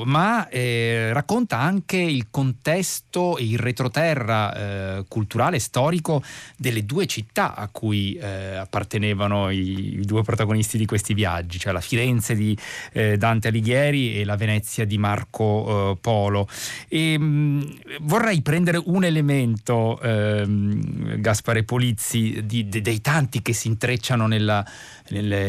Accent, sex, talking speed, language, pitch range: native, male, 135 wpm, Italian, 105-130 Hz